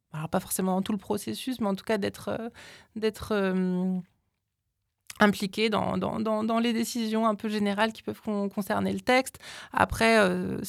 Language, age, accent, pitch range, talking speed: French, 20-39, French, 195-230 Hz, 175 wpm